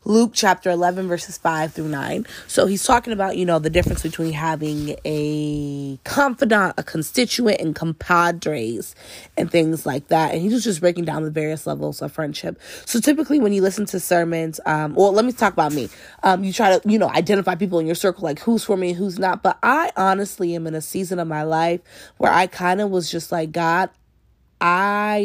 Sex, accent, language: female, American, English